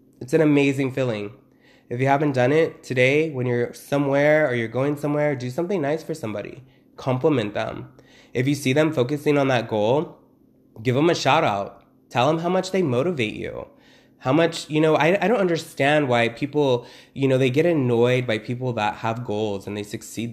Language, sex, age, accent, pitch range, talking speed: English, male, 20-39, American, 115-150 Hz, 200 wpm